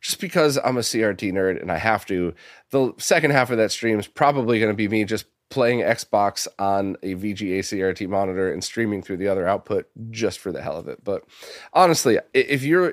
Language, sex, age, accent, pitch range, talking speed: English, male, 30-49, American, 100-140 Hz, 215 wpm